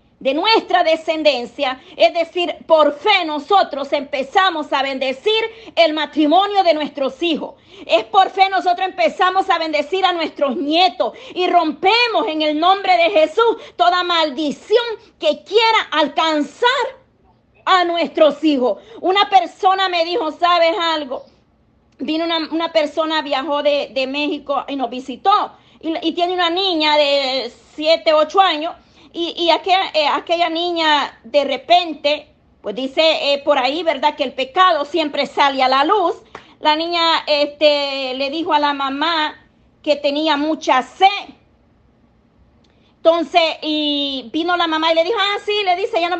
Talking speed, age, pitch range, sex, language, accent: 150 wpm, 40-59, 295-365 Hz, female, Spanish, American